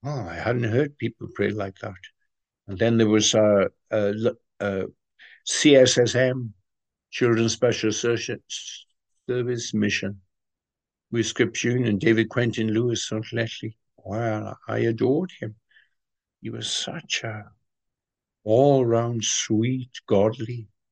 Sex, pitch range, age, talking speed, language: male, 110-125 Hz, 60-79, 115 wpm, English